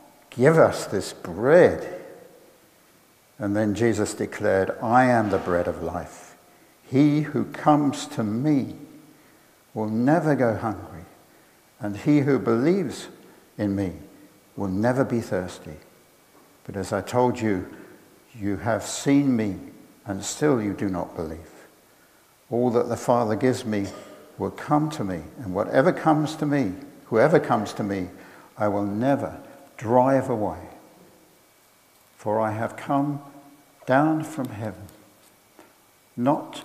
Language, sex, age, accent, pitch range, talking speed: English, male, 60-79, British, 105-135 Hz, 130 wpm